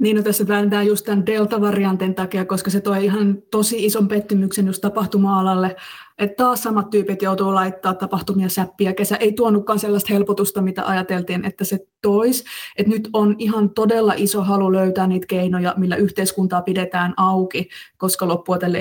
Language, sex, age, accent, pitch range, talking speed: Finnish, female, 20-39, native, 190-215 Hz, 165 wpm